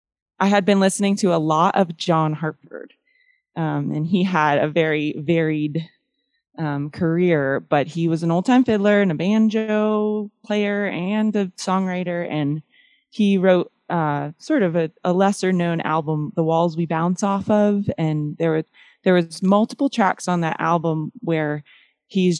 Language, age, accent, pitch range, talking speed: English, 20-39, American, 155-200 Hz, 160 wpm